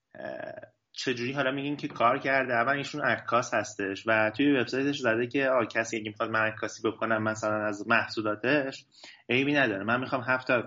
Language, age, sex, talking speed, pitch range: Persian, 30-49, male, 155 wpm, 110-130 Hz